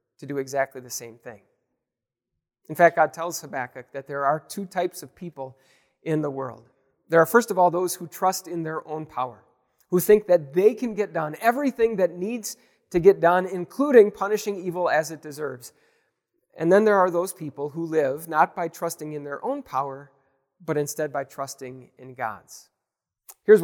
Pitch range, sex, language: 140-190 Hz, male, English